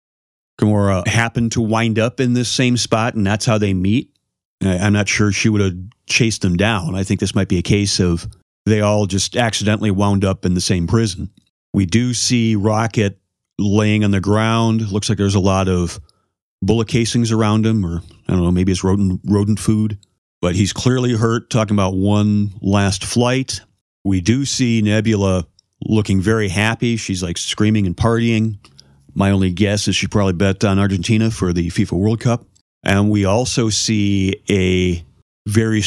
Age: 40-59